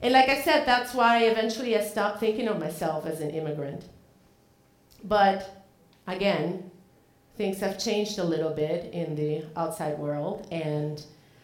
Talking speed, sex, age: 145 wpm, female, 40-59